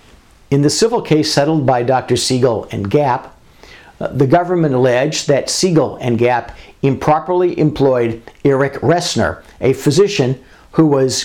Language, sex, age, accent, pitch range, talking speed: English, male, 60-79, American, 120-155 Hz, 135 wpm